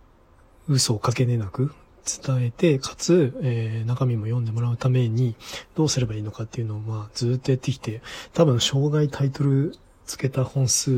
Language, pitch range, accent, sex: Japanese, 110-135 Hz, native, male